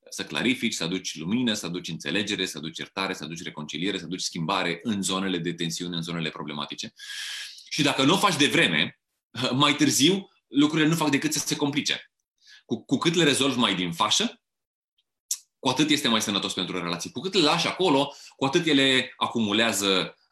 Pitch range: 90-130 Hz